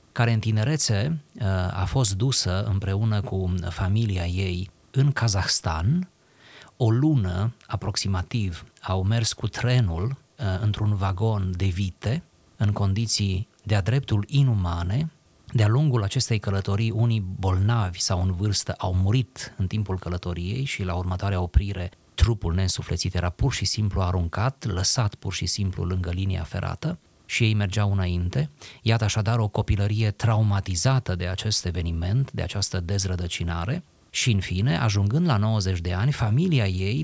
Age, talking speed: 30-49, 140 wpm